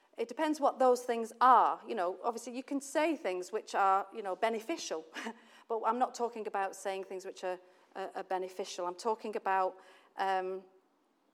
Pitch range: 185-225 Hz